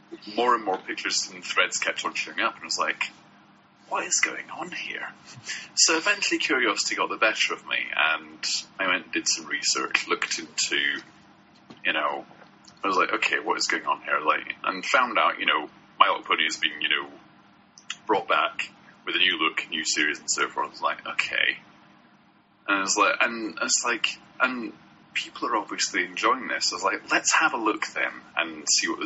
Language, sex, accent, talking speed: English, male, British, 205 wpm